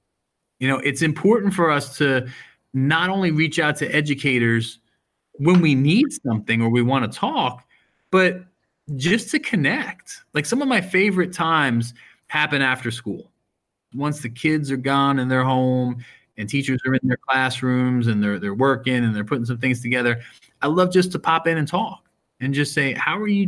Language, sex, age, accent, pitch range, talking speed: English, male, 30-49, American, 120-170 Hz, 185 wpm